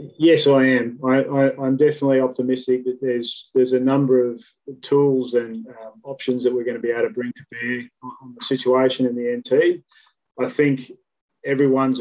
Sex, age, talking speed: male, 30-49, 185 wpm